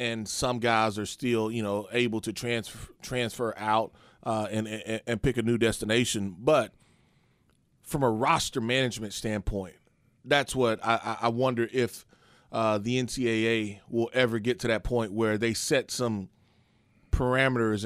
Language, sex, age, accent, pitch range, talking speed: English, male, 30-49, American, 110-125 Hz, 155 wpm